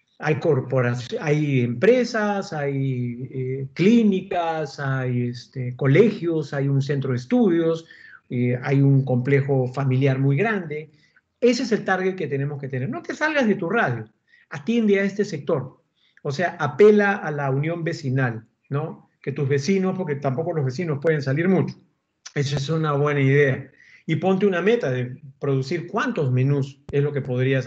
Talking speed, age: 165 wpm, 50-69